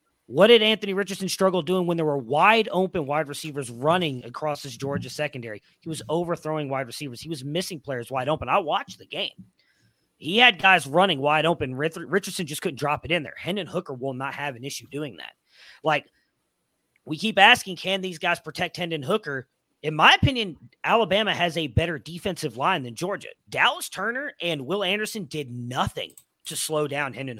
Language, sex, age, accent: English, male, 40-59, American